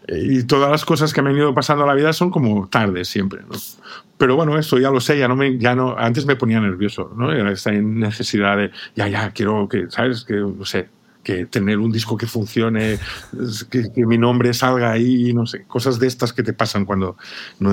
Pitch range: 100-125 Hz